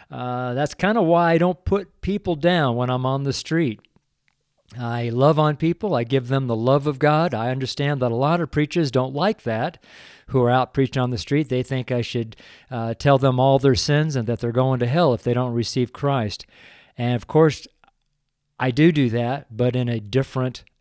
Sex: male